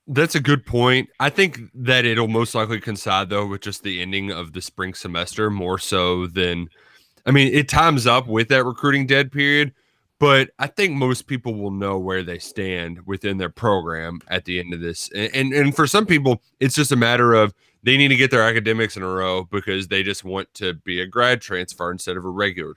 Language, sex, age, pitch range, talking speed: English, male, 20-39, 95-130 Hz, 220 wpm